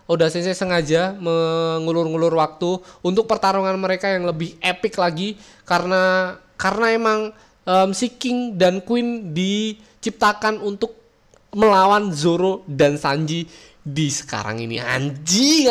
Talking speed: 115 wpm